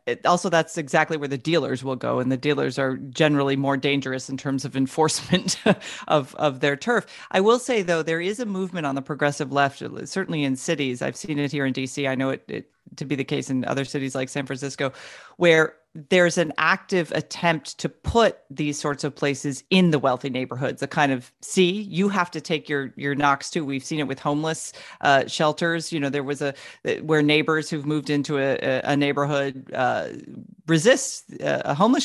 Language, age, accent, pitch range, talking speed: English, 40-59, American, 140-170 Hz, 205 wpm